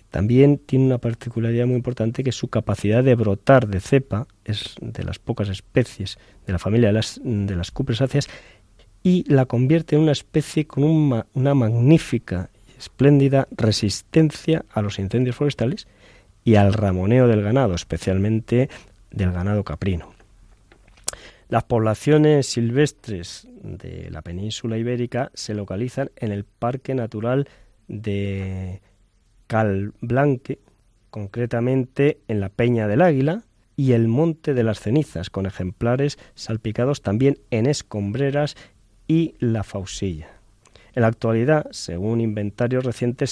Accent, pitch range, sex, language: Spanish, 100-130 Hz, male, Spanish